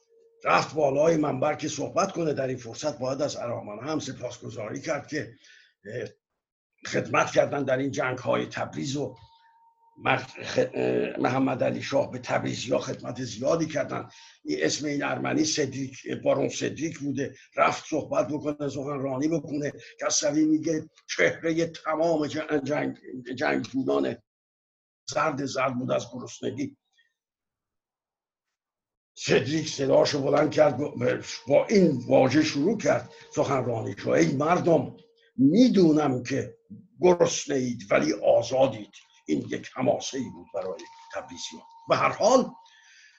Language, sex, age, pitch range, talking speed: Persian, male, 60-79, 140-230 Hz, 125 wpm